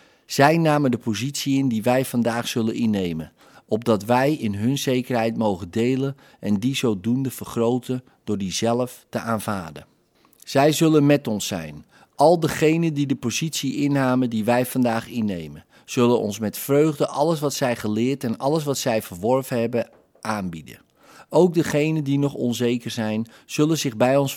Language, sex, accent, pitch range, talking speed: Dutch, male, Dutch, 110-140 Hz, 165 wpm